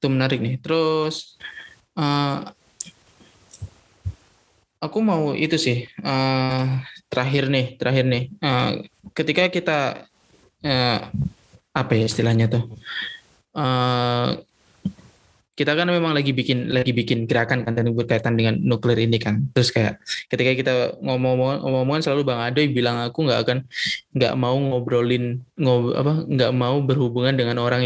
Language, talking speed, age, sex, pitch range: Indonesian, 125 wpm, 20-39, male, 125-150 Hz